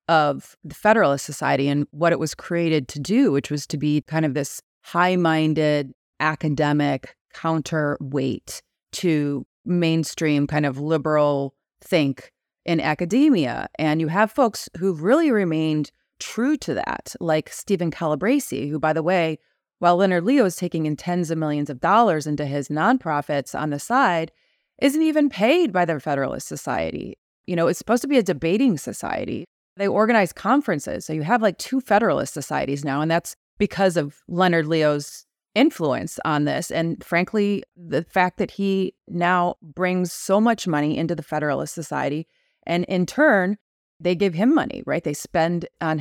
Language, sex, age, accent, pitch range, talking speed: English, female, 30-49, American, 150-195 Hz, 165 wpm